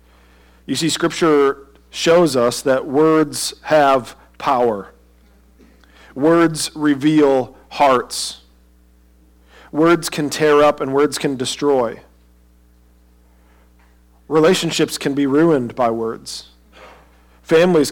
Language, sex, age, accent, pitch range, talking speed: English, male, 40-59, American, 115-145 Hz, 90 wpm